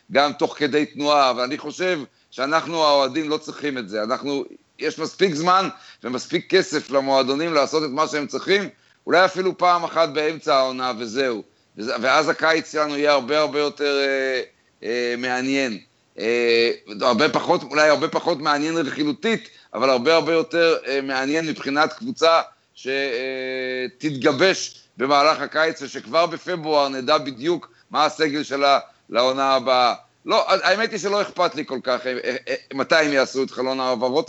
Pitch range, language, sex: 125-160 Hz, Hebrew, male